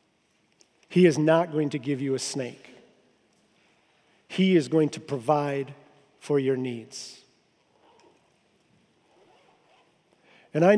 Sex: male